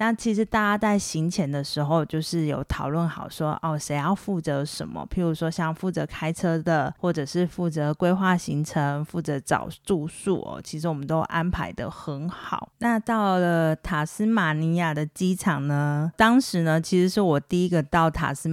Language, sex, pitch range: Chinese, female, 150-185 Hz